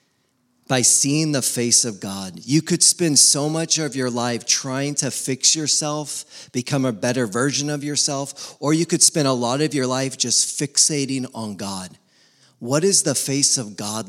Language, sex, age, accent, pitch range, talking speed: English, male, 40-59, American, 120-150 Hz, 185 wpm